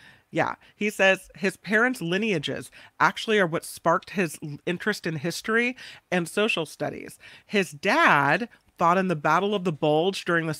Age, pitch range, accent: 40-59, 170-225 Hz, American